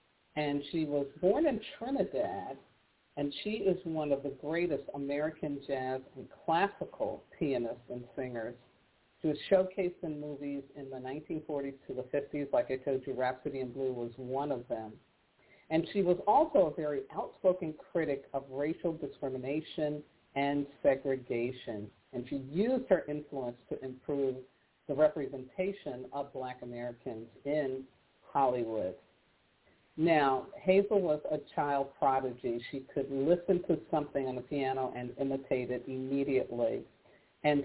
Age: 50-69